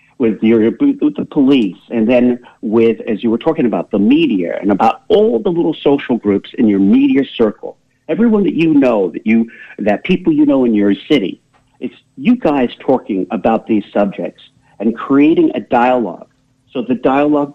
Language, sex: English, male